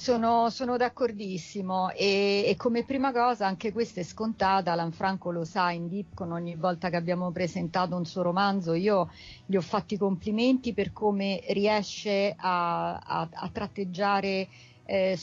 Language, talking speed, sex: Italian, 150 wpm, female